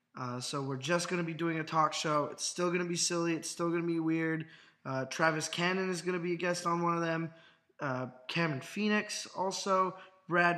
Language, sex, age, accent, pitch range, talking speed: English, male, 20-39, American, 150-175 Hz, 235 wpm